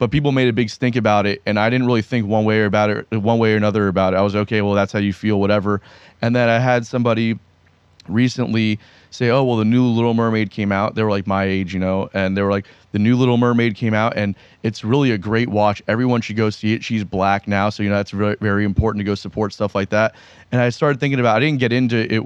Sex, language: male, English